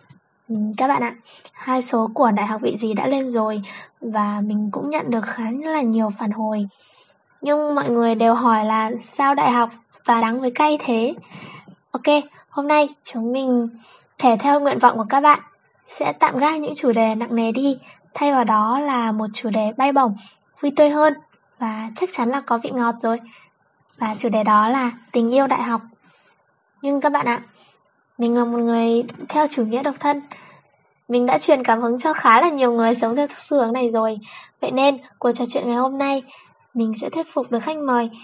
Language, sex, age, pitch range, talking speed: Vietnamese, female, 20-39, 225-280 Hz, 205 wpm